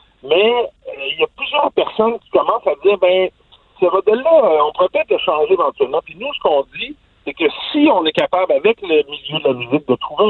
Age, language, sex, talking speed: 50-69, French, male, 225 wpm